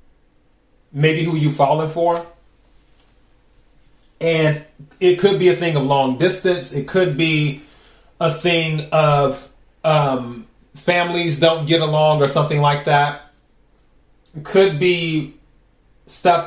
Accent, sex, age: American, male, 30-49